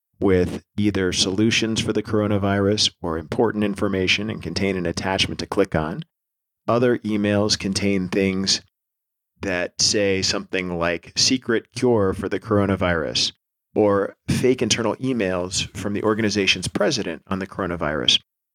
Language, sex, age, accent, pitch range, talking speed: English, male, 40-59, American, 90-110 Hz, 130 wpm